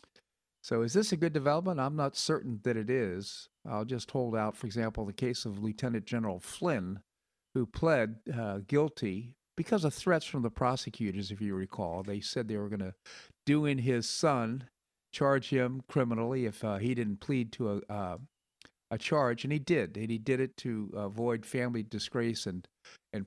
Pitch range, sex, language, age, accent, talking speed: 110-140 Hz, male, English, 50-69, American, 190 wpm